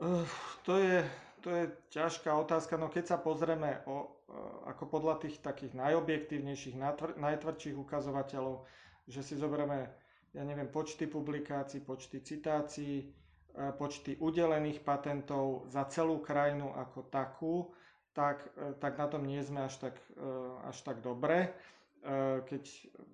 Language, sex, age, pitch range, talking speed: Slovak, male, 30-49, 130-150 Hz, 120 wpm